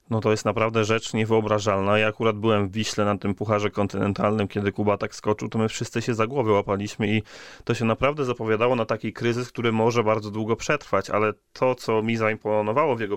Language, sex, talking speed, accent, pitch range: Polish, male, 210 wpm, native, 100-115 Hz